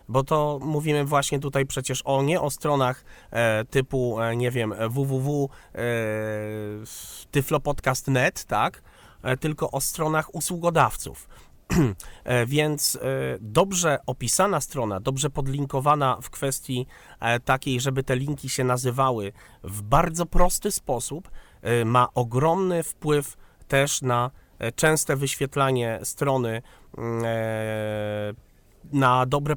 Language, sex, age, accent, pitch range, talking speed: Polish, male, 30-49, native, 120-155 Hz, 95 wpm